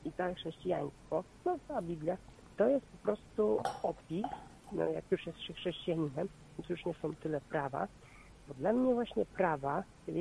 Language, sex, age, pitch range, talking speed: Polish, female, 50-69, 155-215 Hz, 170 wpm